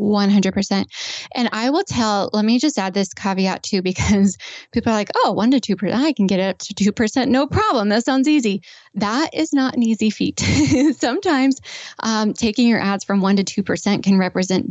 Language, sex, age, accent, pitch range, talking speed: English, female, 10-29, American, 200-255 Hz, 205 wpm